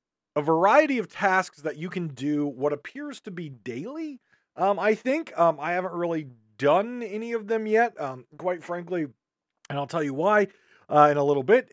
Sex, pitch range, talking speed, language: male, 145-205 Hz, 195 wpm, English